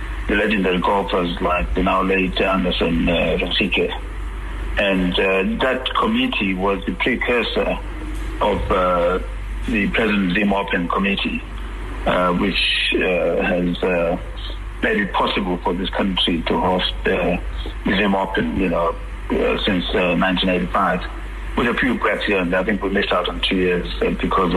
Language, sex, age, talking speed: English, male, 60-79, 150 wpm